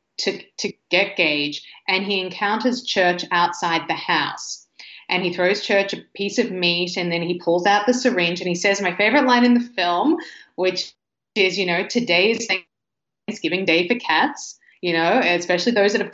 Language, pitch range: English, 175-235 Hz